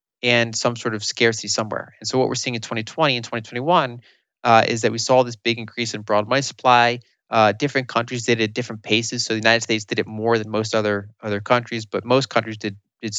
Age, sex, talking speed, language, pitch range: 30-49, male, 235 wpm, English, 105-120 Hz